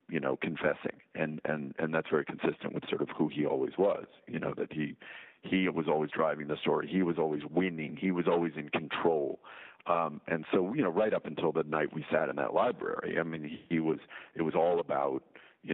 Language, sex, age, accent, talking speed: English, male, 50-69, American, 230 wpm